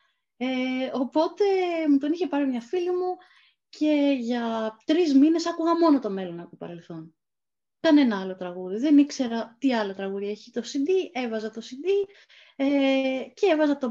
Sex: female